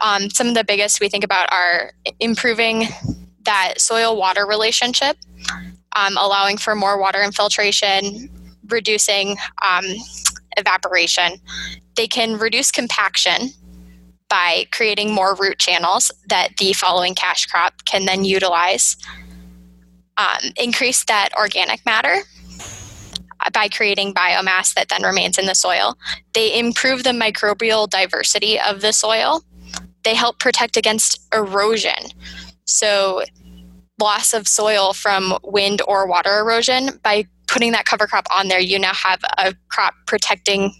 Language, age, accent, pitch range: English, 10-29, American, 185-220 Hz